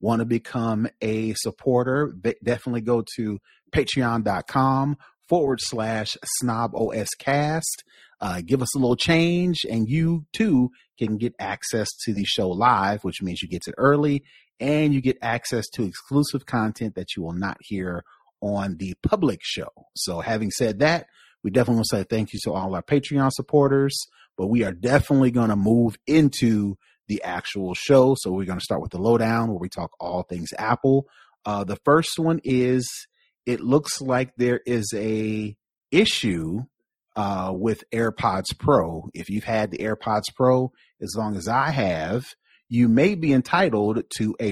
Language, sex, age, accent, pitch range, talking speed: English, male, 30-49, American, 105-135 Hz, 170 wpm